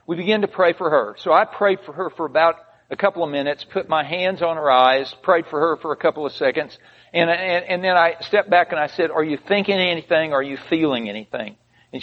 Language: English